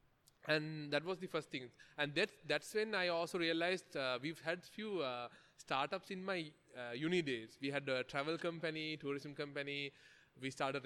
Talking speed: 180 wpm